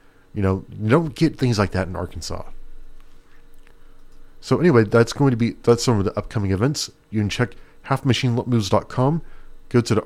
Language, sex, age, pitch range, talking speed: English, male, 40-59, 95-130 Hz, 175 wpm